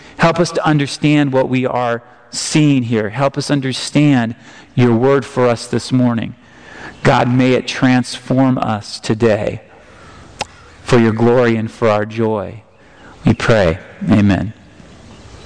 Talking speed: 130 wpm